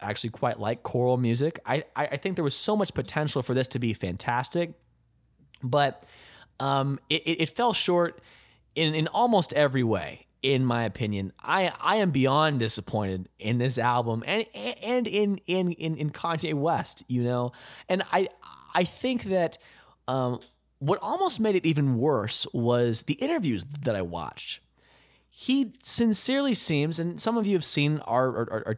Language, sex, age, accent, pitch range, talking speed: English, male, 20-39, American, 120-185 Hz, 170 wpm